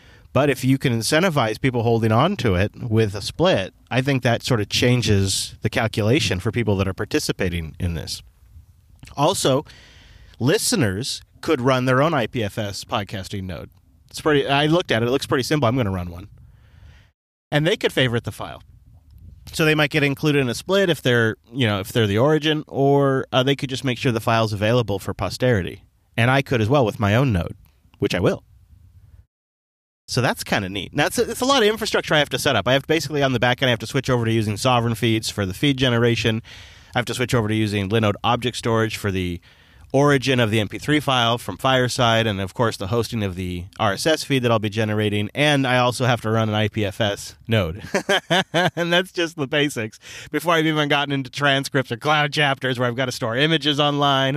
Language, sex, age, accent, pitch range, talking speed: English, male, 30-49, American, 105-140 Hz, 215 wpm